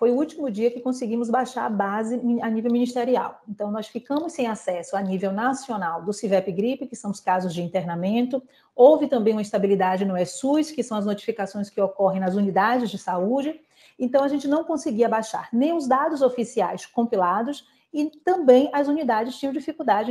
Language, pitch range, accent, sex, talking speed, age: Portuguese, 215-280 Hz, Brazilian, female, 185 wpm, 40-59